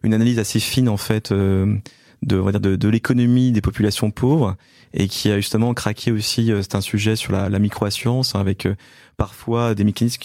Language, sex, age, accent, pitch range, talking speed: French, male, 20-39, French, 100-120 Hz, 195 wpm